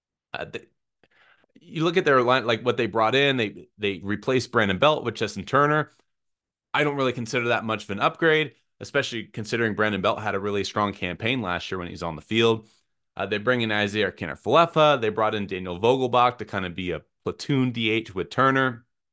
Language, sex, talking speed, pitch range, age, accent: English, male, 205 wpm, 100-130 Hz, 30-49, American